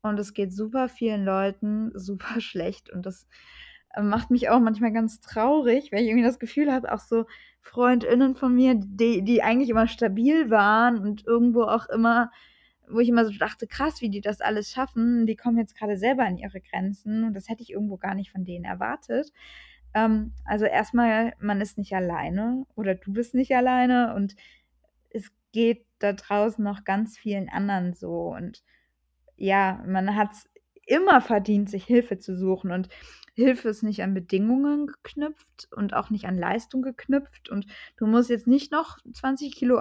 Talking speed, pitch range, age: 180 wpm, 205-245 Hz, 20-39